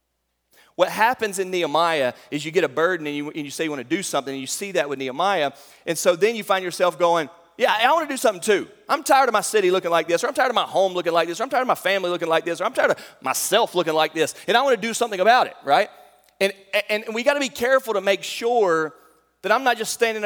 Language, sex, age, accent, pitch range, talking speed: English, male, 30-49, American, 160-215 Hz, 285 wpm